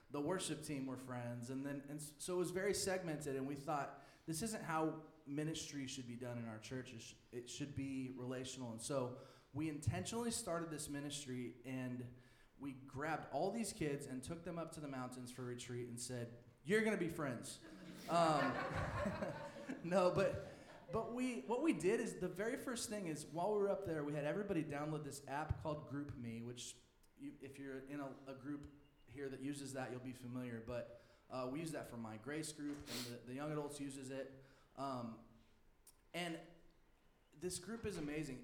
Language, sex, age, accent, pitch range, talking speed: English, male, 20-39, American, 125-160 Hz, 195 wpm